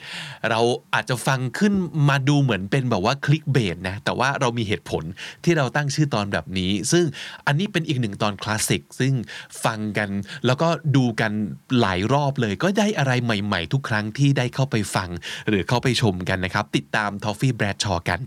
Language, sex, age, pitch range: Thai, male, 20-39, 105-140 Hz